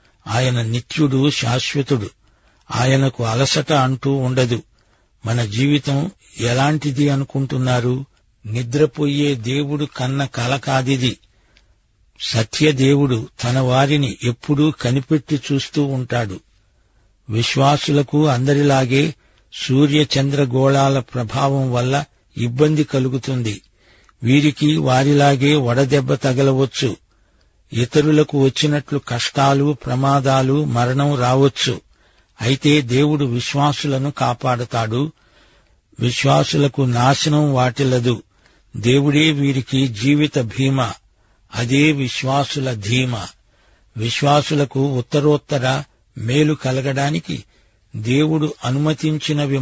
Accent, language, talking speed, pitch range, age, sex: native, Telugu, 70 wpm, 120-145 Hz, 60-79, male